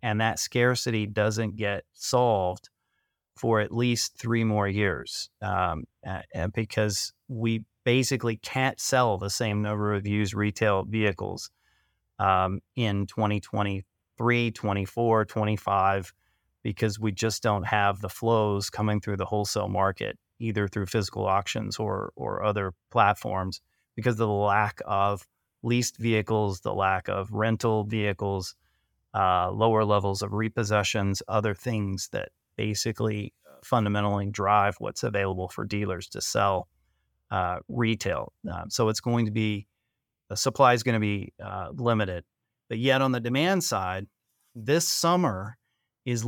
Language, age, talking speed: English, 30-49, 135 wpm